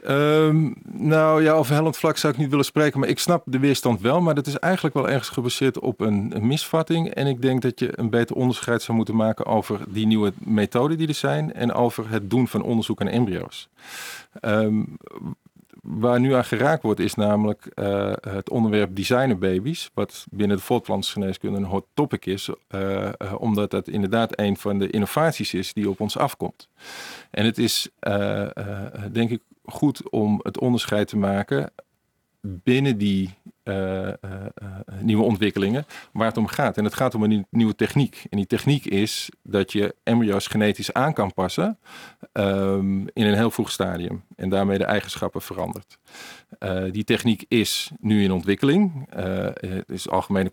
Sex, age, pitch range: male, 50-69, 100-125 Hz